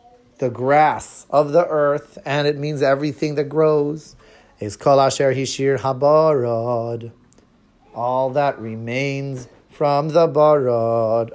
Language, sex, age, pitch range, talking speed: English, male, 30-49, 125-155 Hz, 110 wpm